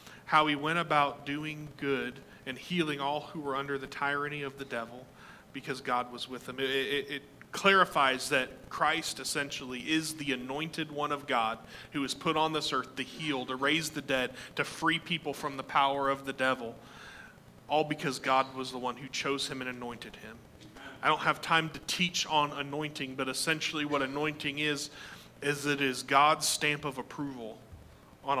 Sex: male